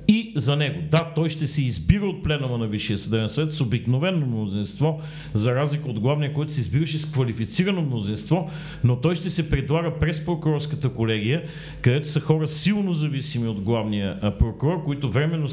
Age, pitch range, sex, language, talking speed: 50-69, 120-155 Hz, male, Bulgarian, 175 wpm